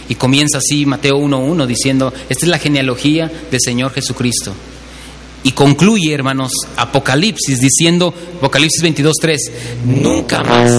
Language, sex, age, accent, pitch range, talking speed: Spanish, male, 40-59, Mexican, 135-200 Hz, 120 wpm